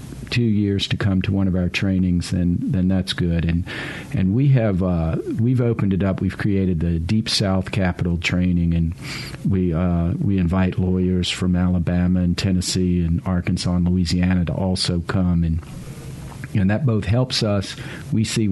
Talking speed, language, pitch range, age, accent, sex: 175 wpm, English, 90-100 Hz, 50-69, American, male